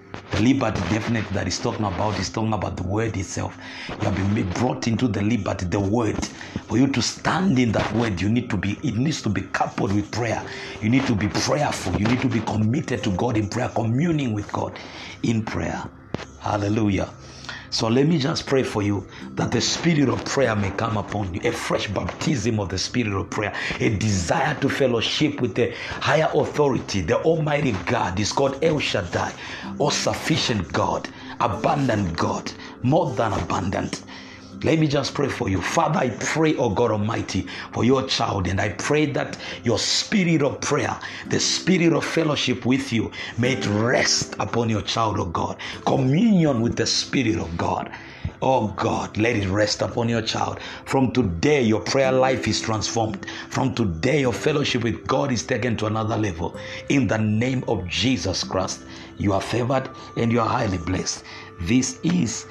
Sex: male